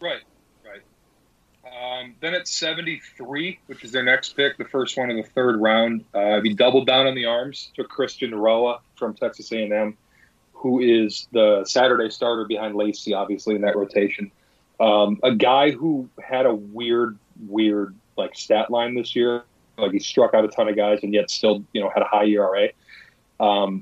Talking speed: 190 wpm